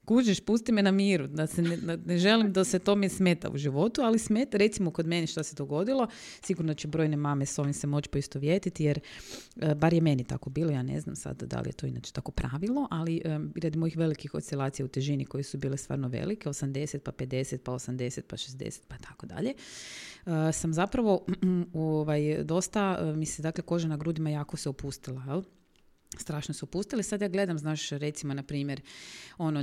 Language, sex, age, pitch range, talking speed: Croatian, female, 30-49, 135-175 Hz, 200 wpm